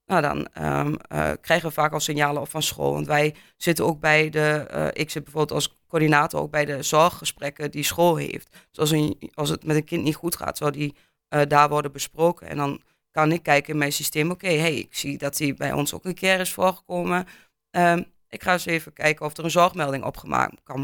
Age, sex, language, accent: 20-39, female, Dutch, Dutch